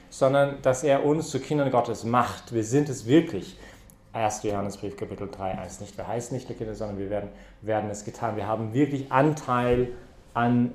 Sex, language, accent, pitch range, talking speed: male, English, German, 110-135 Hz, 190 wpm